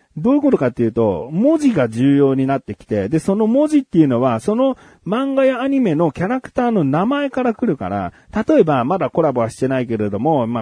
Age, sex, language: 40-59, male, Japanese